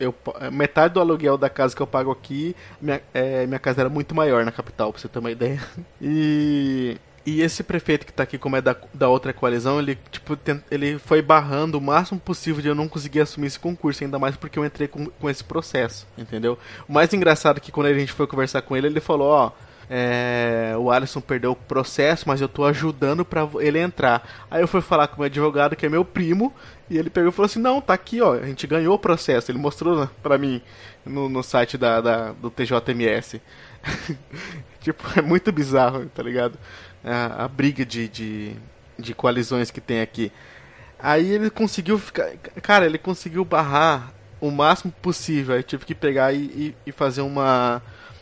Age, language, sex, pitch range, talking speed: 20-39, Portuguese, male, 125-160 Hz, 205 wpm